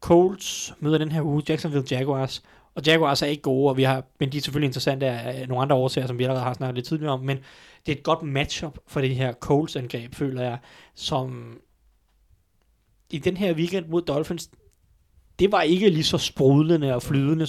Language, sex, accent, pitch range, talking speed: Danish, male, native, 125-150 Hz, 205 wpm